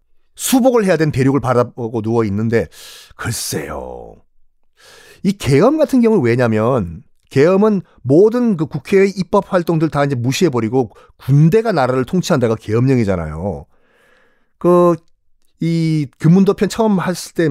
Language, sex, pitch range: Korean, male, 130-205 Hz